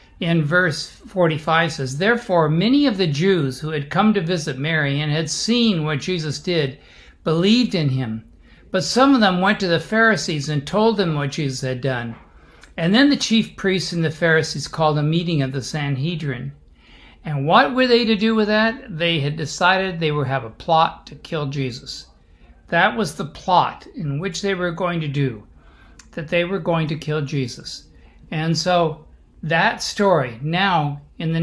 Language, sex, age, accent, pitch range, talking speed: English, male, 60-79, American, 145-185 Hz, 185 wpm